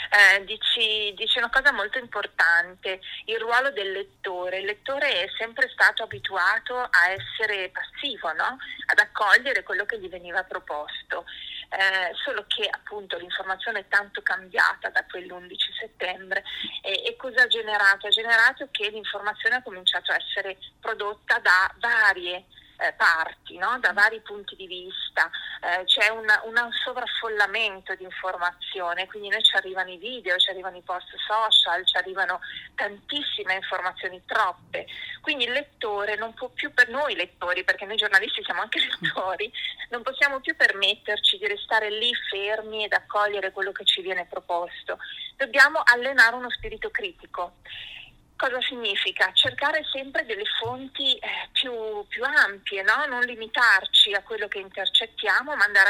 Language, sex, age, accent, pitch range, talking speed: Italian, female, 30-49, native, 190-255 Hz, 145 wpm